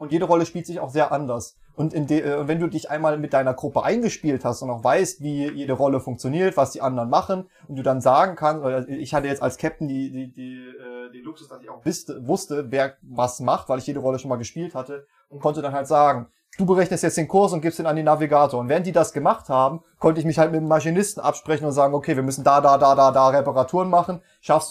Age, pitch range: 30-49, 140-165 Hz